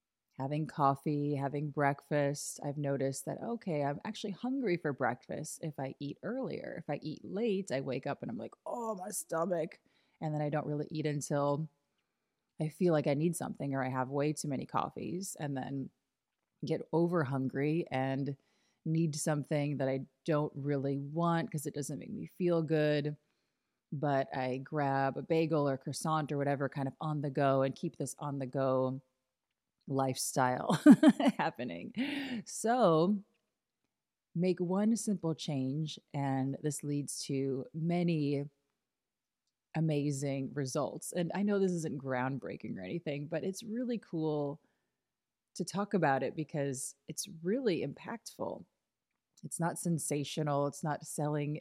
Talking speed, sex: 150 wpm, female